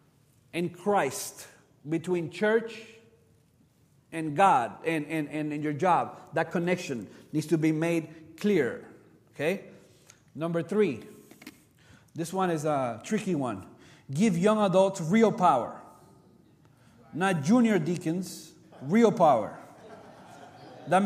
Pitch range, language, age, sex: 165-240 Hz, English, 40-59, male